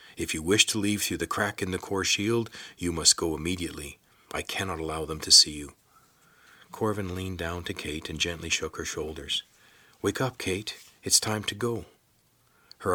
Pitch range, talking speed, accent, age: 85-130 Hz, 190 wpm, American, 50-69